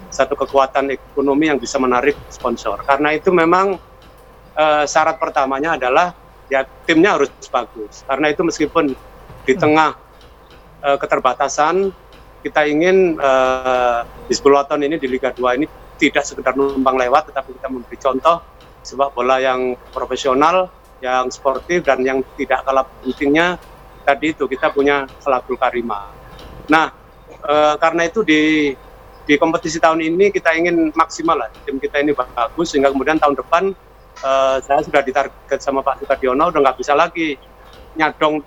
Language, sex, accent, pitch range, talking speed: Indonesian, male, native, 130-160 Hz, 145 wpm